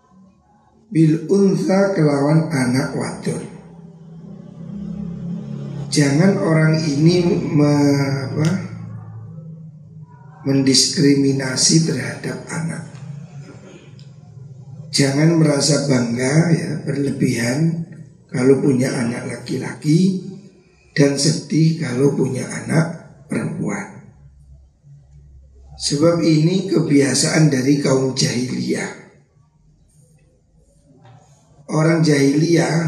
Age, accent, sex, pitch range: 50-69, native, male, 140-160 Hz